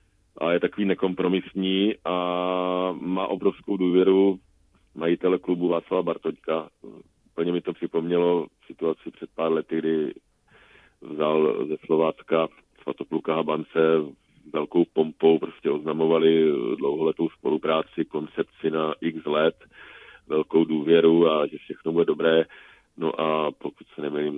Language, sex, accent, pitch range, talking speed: Czech, male, native, 80-90 Hz, 120 wpm